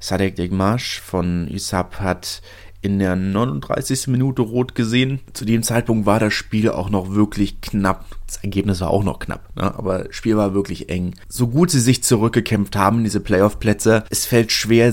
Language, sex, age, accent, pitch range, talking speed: German, male, 30-49, German, 95-110 Hz, 180 wpm